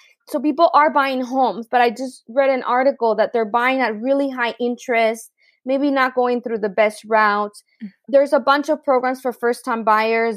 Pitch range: 220-265 Hz